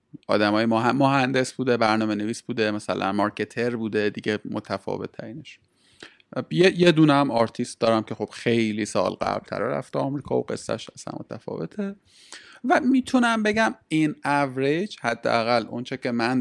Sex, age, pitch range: male, 30-49, 115-150 Hz